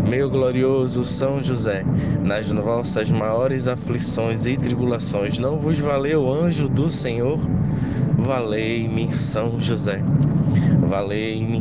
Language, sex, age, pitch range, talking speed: Portuguese, male, 20-39, 110-135 Hz, 110 wpm